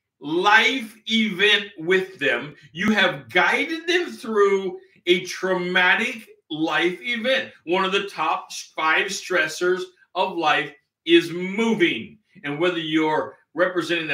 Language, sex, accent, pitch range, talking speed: English, male, American, 150-200 Hz, 115 wpm